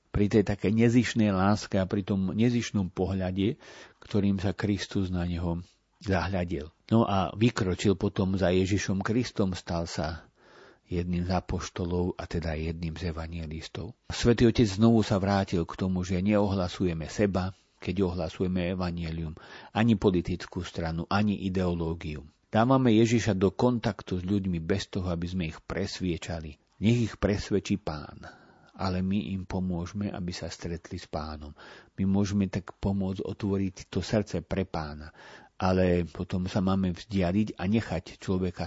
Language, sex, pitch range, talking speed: Slovak, male, 85-100 Hz, 145 wpm